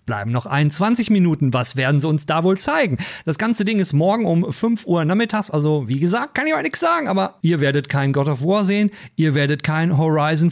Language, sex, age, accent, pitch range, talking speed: German, male, 40-59, German, 140-205 Hz, 230 wpm